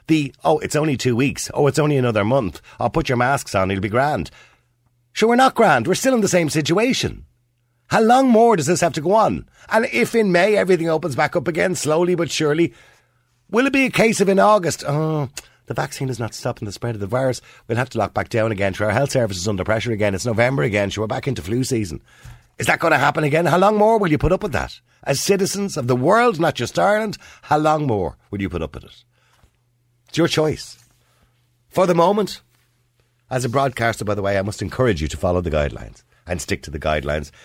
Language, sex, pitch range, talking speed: English, male, 105-160 Hz, 240 wpm